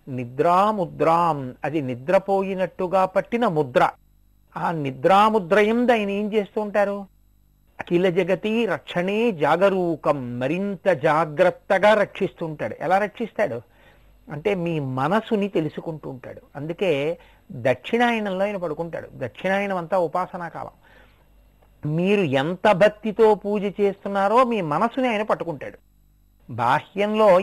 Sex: male